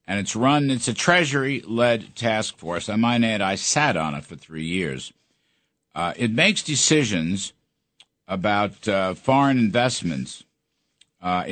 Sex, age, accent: male, 60-79, American